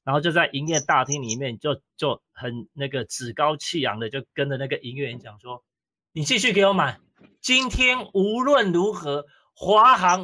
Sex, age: male, 30-49